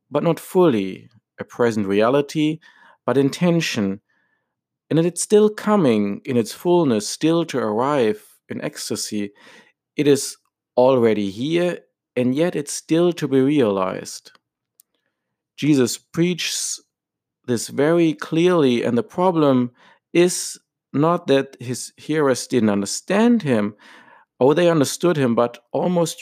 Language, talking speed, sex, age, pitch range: English, 125 wpm, male, 50-69, 120-165 Hz